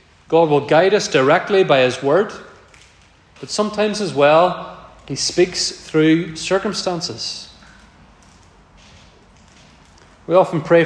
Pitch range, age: 130-165 Hz, 30-49